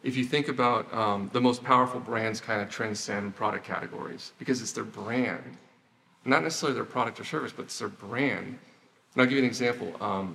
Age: 40-59